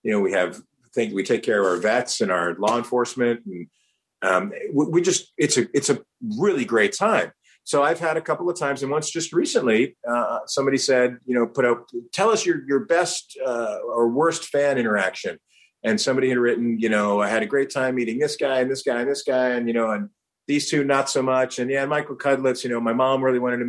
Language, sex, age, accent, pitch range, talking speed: English, male, 40-59, American, 115-150 Hz, 240 wpm